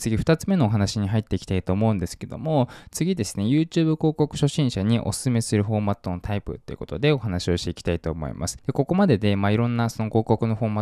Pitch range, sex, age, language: 95-130 Hz, male, 20-39, Japanese